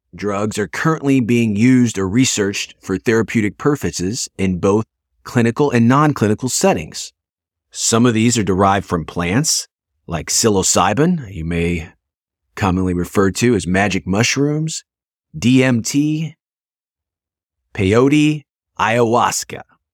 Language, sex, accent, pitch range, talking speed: English, male, American, 90-120 Hz, 110 wpm